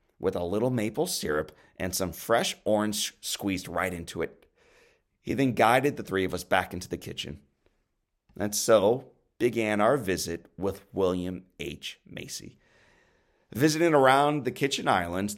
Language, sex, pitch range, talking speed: English, male, 100-140 Hz, 150 wpm